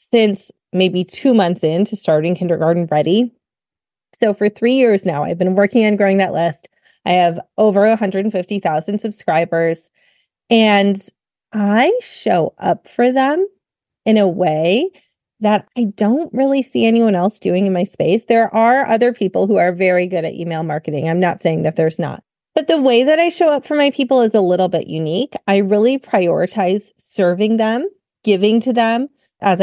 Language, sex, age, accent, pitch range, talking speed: English, female, 30-49, American, 185-240 Hz, 175 wpm